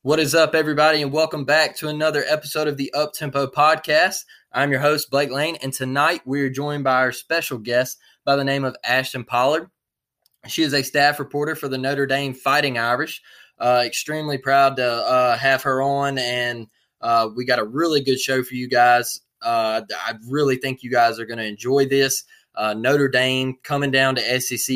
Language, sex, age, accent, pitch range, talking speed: English, male, 20-39, American, 125-140 Hz, 200 wpm